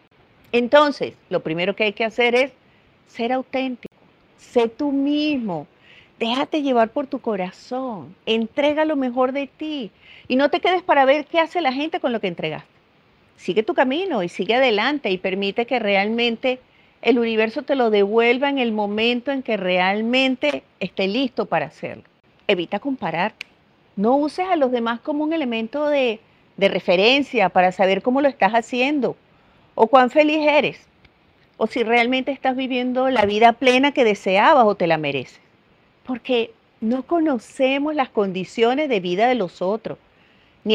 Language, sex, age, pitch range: English, female, 40-59, 195-275 Hz